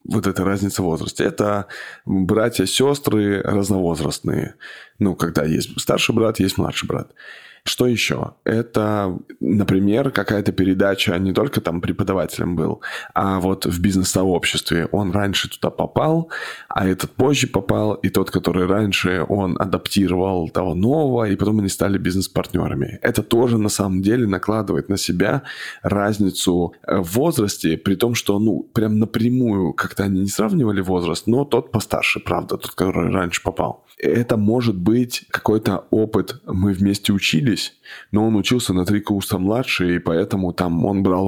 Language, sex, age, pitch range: Russian, male, 20-39, 95-110 Hz